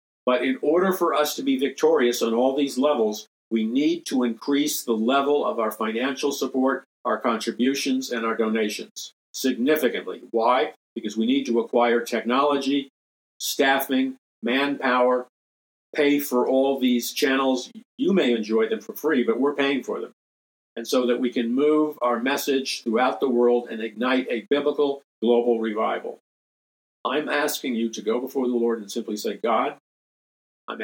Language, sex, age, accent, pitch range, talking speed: English, male, 50-69, American, 115-135 Hz, 160 wpm